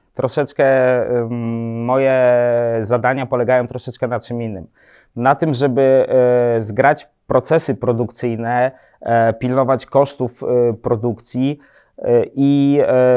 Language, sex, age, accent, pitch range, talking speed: Polish, male, 30-49, native, 120-145 Hz, 80 wpm